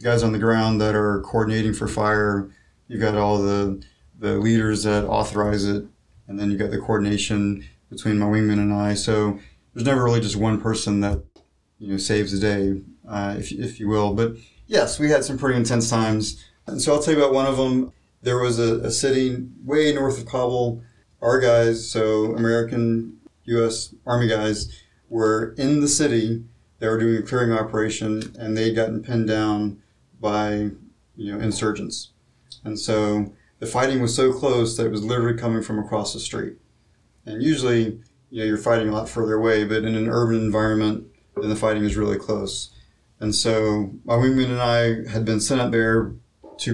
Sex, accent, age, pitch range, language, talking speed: male, American, 30-49, 105-115 Hz, English, 190 wpm